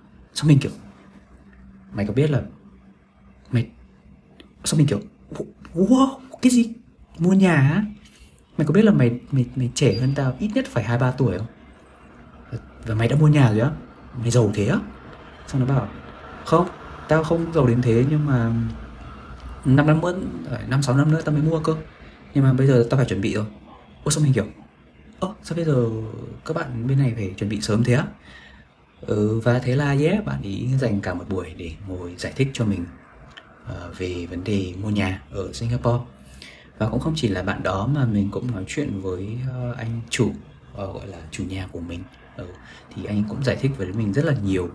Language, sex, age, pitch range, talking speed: Vietnamese, male, 20-39, 95-135 Hz, 200 wpm